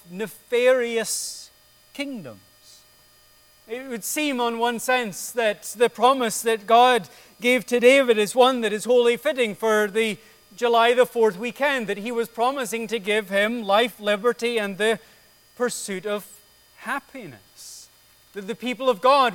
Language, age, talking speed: English, 40-59, 145 wpm